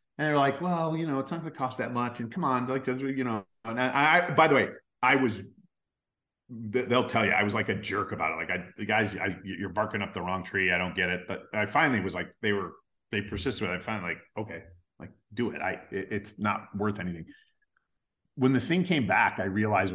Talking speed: 250 wpm